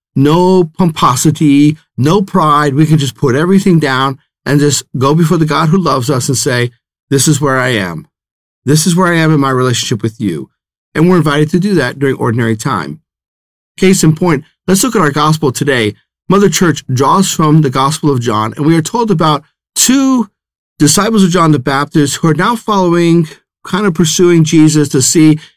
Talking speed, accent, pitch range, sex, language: 195 wpm, American, 140-180 Hz, male, English